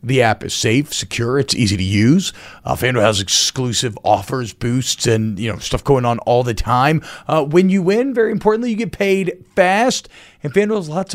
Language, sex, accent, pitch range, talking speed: English, male, American, 130-180 Hz, 205 wpm